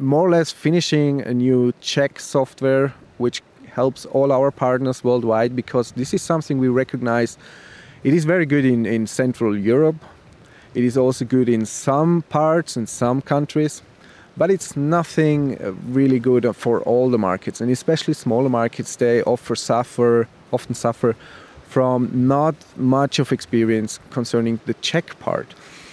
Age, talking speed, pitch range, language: 30-49, 150 wpm, 120-155 Hz, English